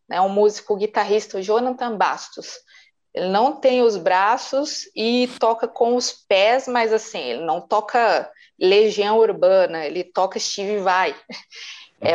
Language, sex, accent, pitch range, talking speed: Portuguese, female, Brazilian, 190-240 Hz, 135 wpm